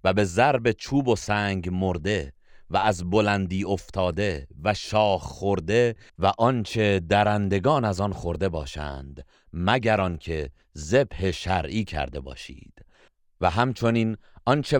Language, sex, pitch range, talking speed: Persian, male, 90-115 Hz, 120 wpm